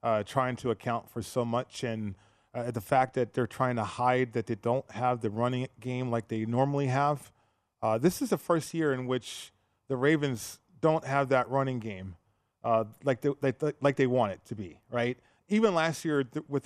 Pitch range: 120-145 Hz